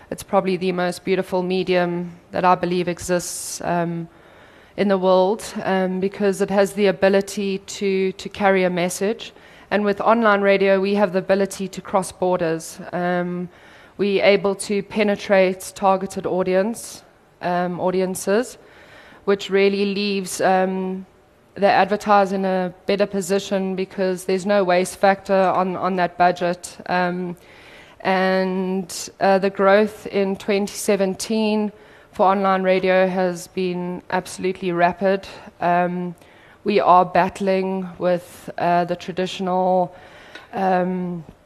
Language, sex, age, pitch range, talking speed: English, female, 20-39, 180-195 Hz, 125 wpm